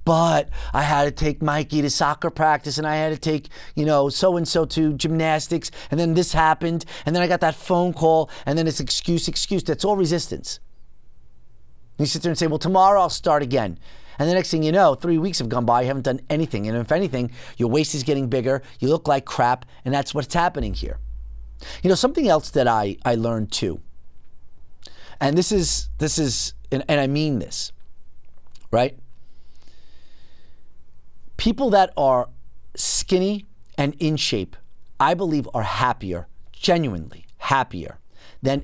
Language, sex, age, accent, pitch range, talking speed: English, male, 30-49, American, 110-155 Hz, 180 wpm